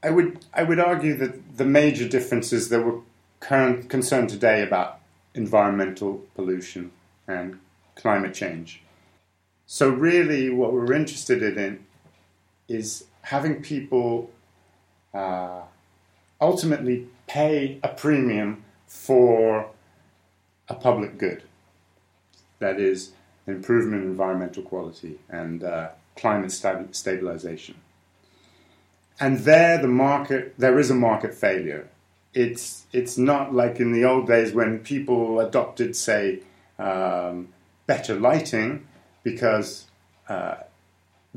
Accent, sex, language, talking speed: British, male, English, 110 wpm